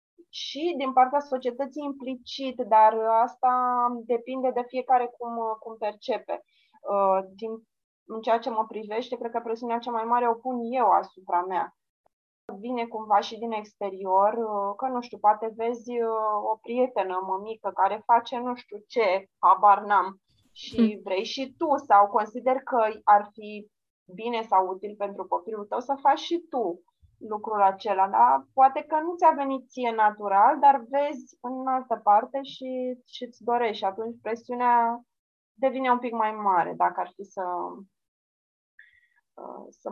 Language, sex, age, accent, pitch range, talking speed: Romanian, female, 20-39, native, 200-250 Hz, 145 wpm